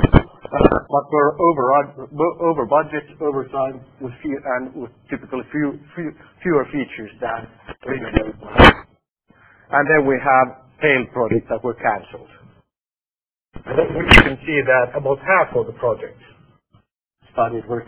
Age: 50-69